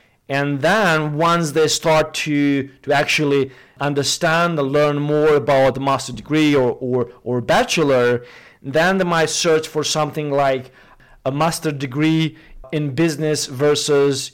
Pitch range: 135-160 Hz